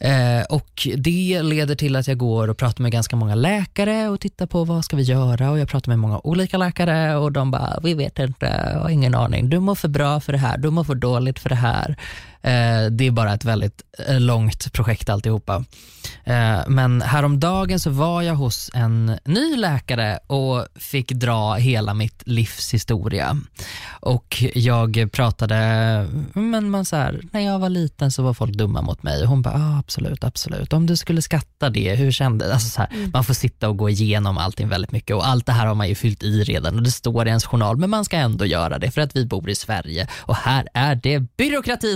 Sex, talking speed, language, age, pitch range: male, 215 wpm, Swedish, 20-39, 110-150 Hz